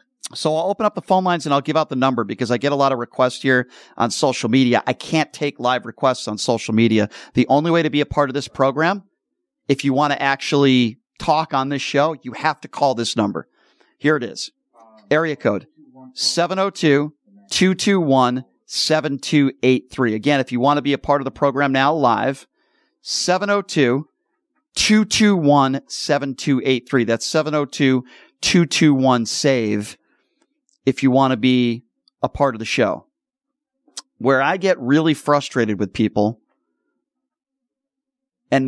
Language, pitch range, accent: English, 130-195 Hz, American